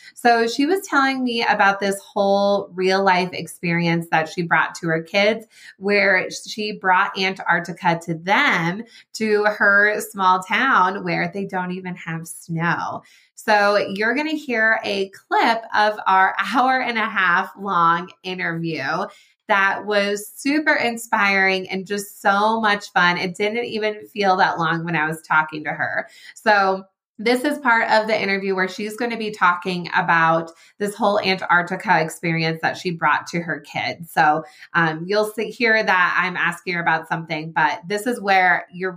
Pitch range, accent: 175-215 Hz, American